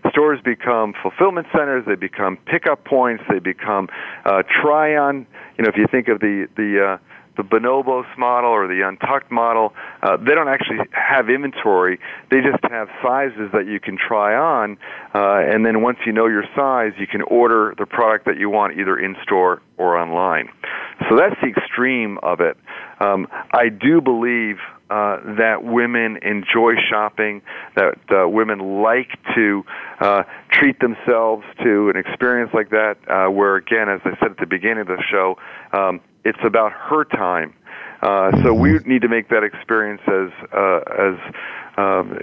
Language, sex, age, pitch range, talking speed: English, male, 40-59, 100-120 Hz, 170 wpm